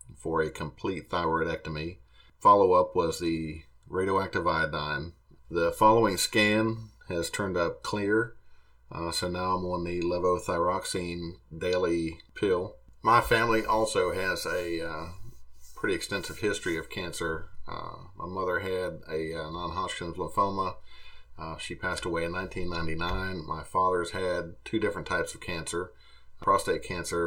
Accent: American